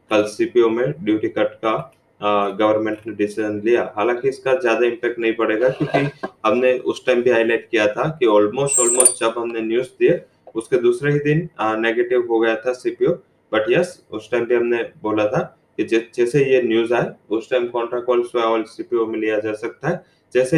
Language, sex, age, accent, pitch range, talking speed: English, male, 20-39, Indian, 110-140 Hz, 155 wpm